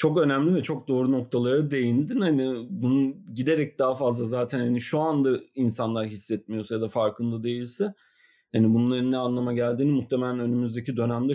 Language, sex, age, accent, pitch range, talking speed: Turkish, male, 40-59, native, 120-150 Hz, 160 wpm